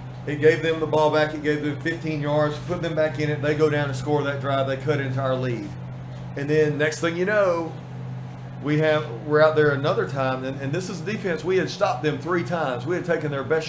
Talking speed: 260 wpm